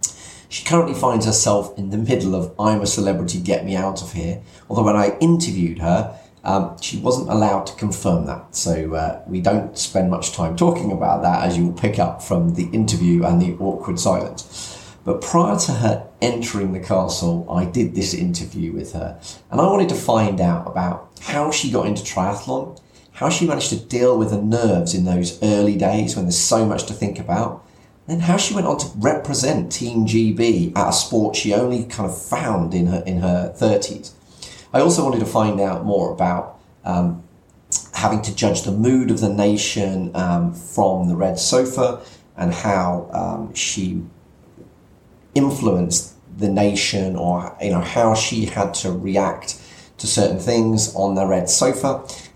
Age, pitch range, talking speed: 30-49, 90-115 Hz, 185 wpm